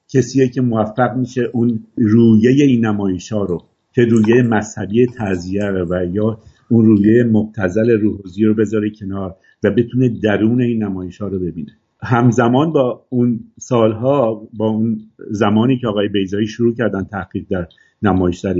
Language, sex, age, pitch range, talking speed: Persian, male, 50-69, 100-125 Hz, 145 wpm